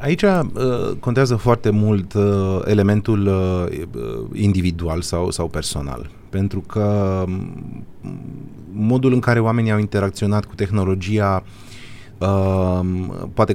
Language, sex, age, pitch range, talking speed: Romanian, male, 30-49, 95-125 Hz, 105 wpm